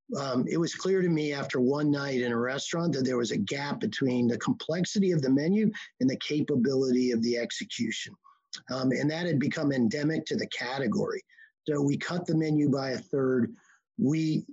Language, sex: English, male